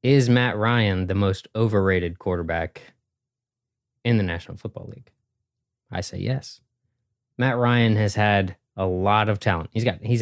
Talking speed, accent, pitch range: 155 wpm, American, 95-120 Hz